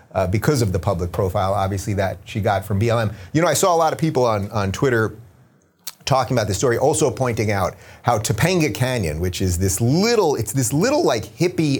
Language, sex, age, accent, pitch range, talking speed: English, male, 30-49, American, 105-150 Hz, 215 wpm